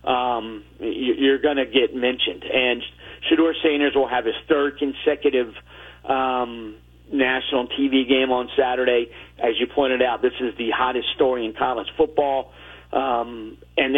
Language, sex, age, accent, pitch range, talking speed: English, male, 50-69, American, 115-140 Hz, 145 wpm